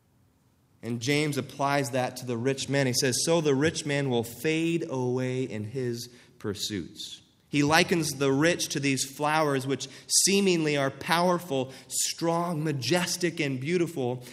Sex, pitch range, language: male, 115-150 Hz, English